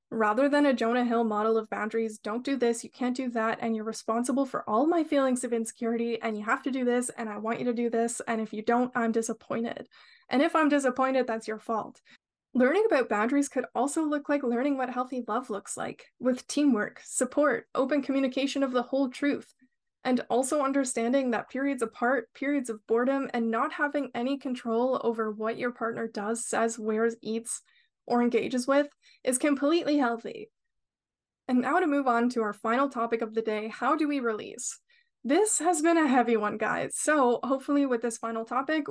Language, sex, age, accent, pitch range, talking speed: English, female, 10-29, American, 230-280 Hz, 200 wpm